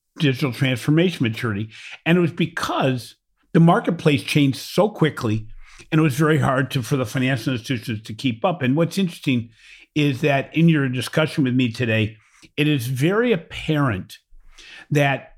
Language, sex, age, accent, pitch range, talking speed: English, male, 50-69, American, 125-165 Hz, 160 wpm